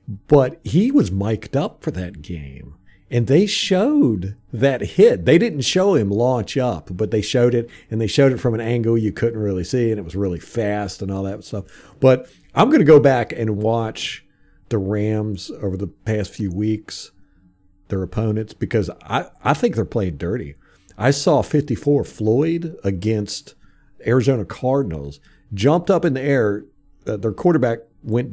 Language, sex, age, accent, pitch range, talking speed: English, male, 50-69, American, 95-135 Hz, 175 wpm